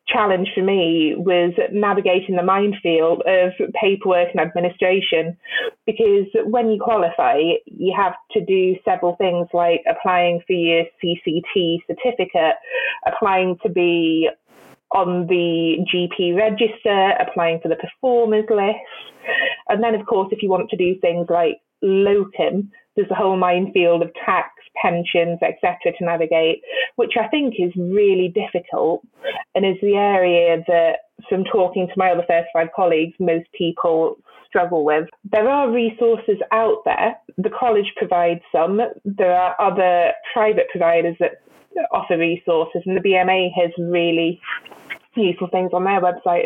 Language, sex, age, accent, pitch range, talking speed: English, female, 20-39, British, 170-215 Hz, 145 wpm